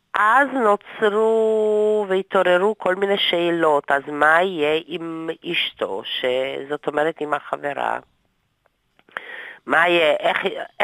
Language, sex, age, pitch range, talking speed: Hebrew, female, 40-59, 155-215 Hz, 100 wpm